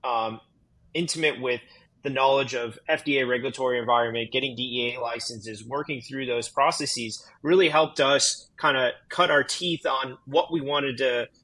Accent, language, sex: American, English, male